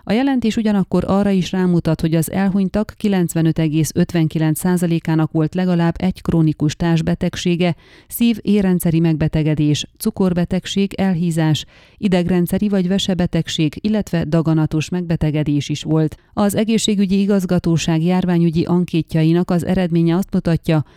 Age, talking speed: 30-49, 105 wpm